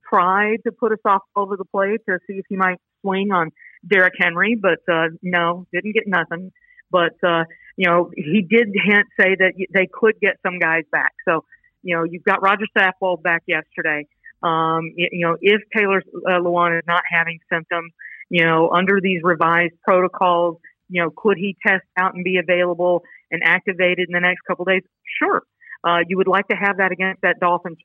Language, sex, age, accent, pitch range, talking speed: English, female, 50-69, American, 170-200 Hz, 200 wpm